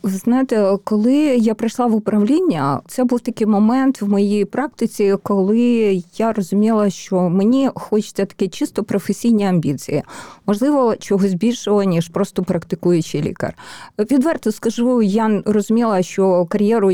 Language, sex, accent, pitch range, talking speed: Ukrainian, female, native, 185-235 Hz, 130 wpm